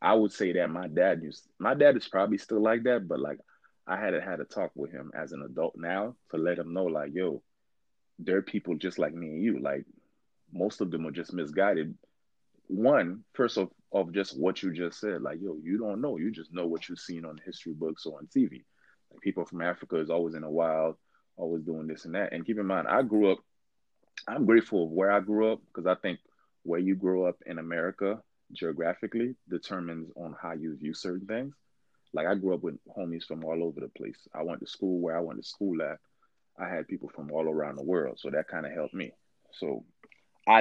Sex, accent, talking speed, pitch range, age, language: male, American, 230 wpm, 80-105 Hz, 20-39, English